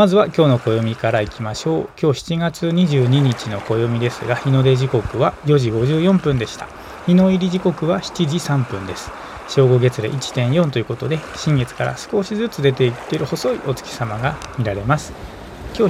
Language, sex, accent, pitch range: Japanese, male, native, 120-155 Hz